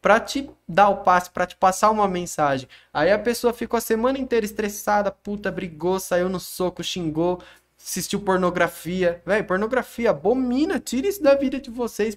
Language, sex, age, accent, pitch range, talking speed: Portuguese, male, 10-29, Brazilian, 165-235 Hz, 175 wpm